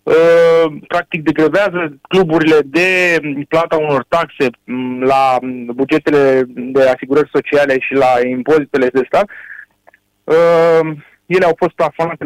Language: Romanian